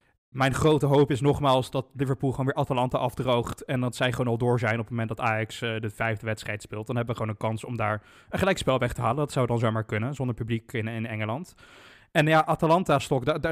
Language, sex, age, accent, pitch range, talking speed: Dutch, male, 20-39, Dutch, 120-145 Hz, 250 wpm